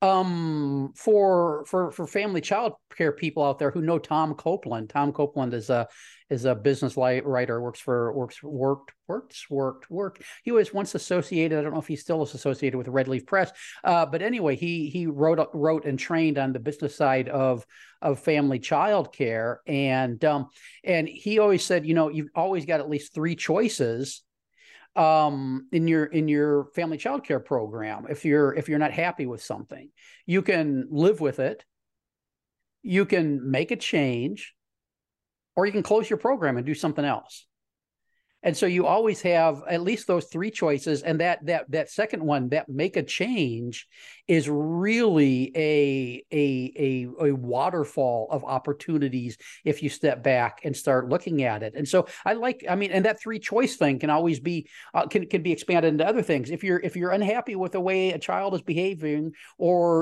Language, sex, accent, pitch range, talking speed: English, male, American, 140-180 Hz, 185 wpm